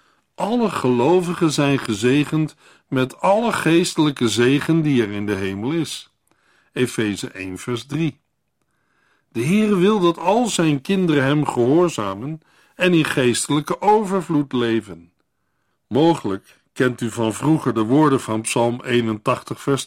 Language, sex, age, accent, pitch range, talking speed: Dutch, male, 60-79, Dutch, 120-175 Hz, 130 wpm